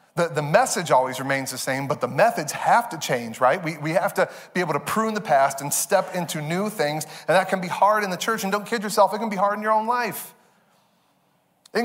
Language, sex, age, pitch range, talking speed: English, male, 30-49, 155-210 Hz, 255 wpm